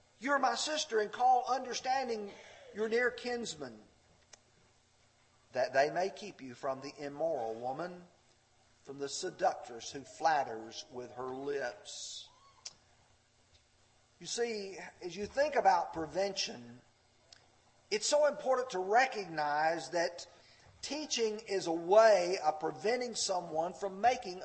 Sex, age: male, 50-69